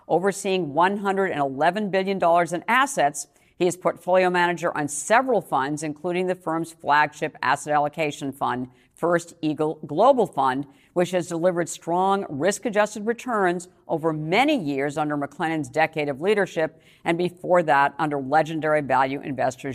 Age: 50-69